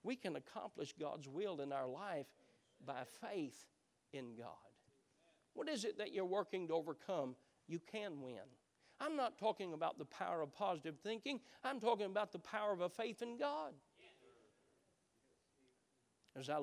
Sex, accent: male, American